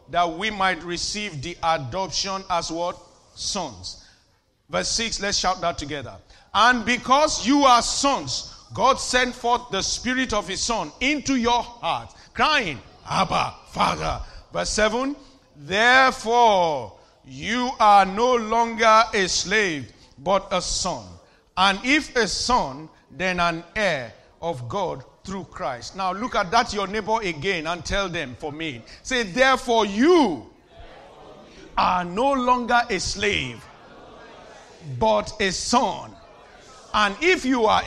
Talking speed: 135 wpm